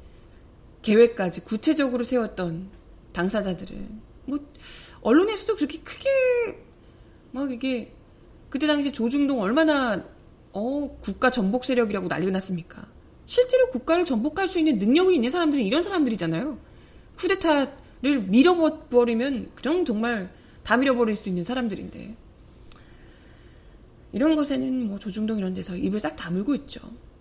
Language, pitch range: Korean, 200-275 Hz